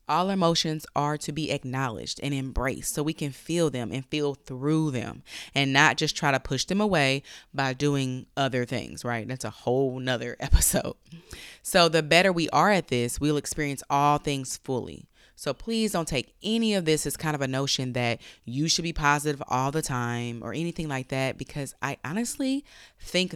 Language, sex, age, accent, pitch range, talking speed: English, female, 20-39, American, 130-160 Hz, 195 wpm